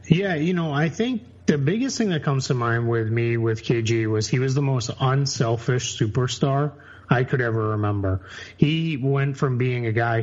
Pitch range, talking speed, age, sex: 110-140 Hz, 195 wpm, 30-49, male